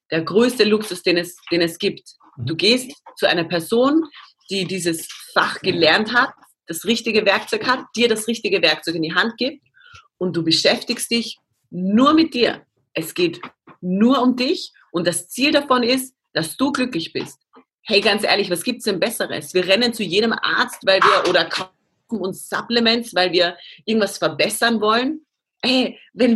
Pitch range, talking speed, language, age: 185-235 Hz, 175 wpm, German, 40-59